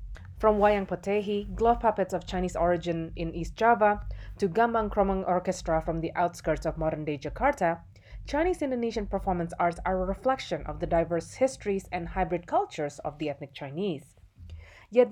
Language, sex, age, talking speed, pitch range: English, female, 30-49, 155 wpm, 155-210 Hz